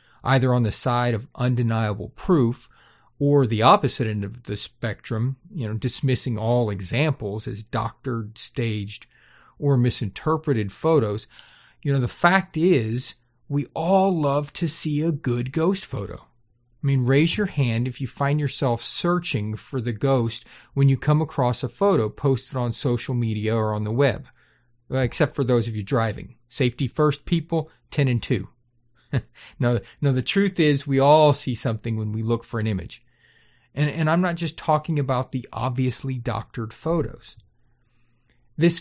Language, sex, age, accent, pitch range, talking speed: English, male, 40-59, American, 120-155 Hz, 160 wpm